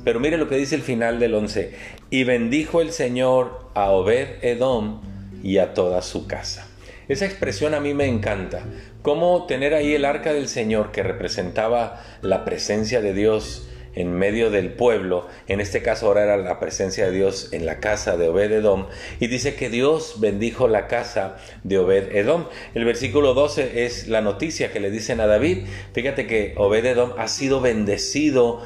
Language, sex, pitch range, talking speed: Spanish, male, 100-135 Hz, 180 wpm